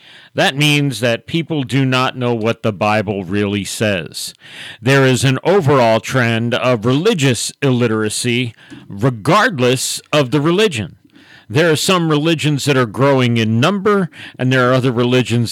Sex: male